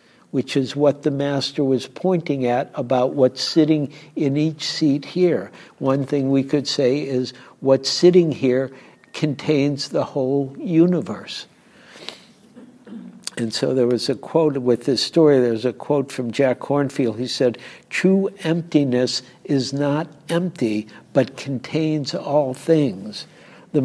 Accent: American